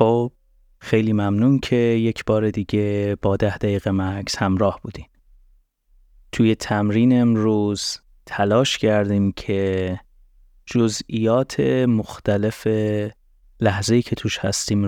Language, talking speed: Persian, 95 wpm